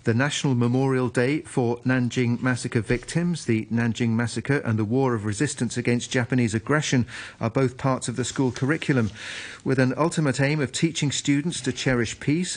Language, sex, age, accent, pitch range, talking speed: English, male, 40-59, British, 120-140 Hz, 170 wpm